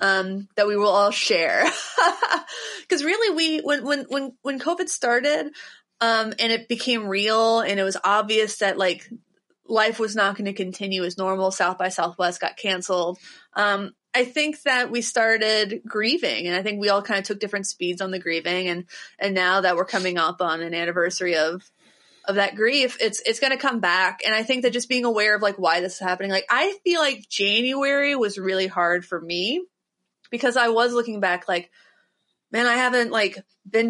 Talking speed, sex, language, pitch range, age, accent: 195 wpm, female, English, 185-240 Hz, 30-49, American